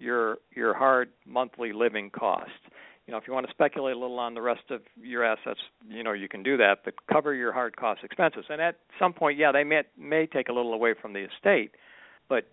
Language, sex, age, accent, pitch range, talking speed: English, male, 60-79, American, 115-145 Hz, 235 wpm